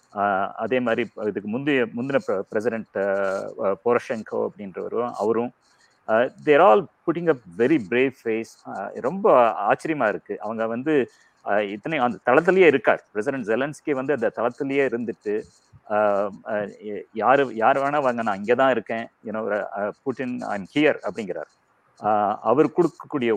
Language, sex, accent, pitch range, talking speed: Tamil, male, native, 110-140 Hz, 120 wpm